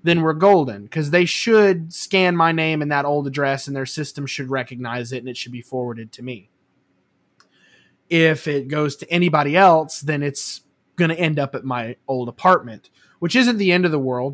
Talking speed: 205 wpm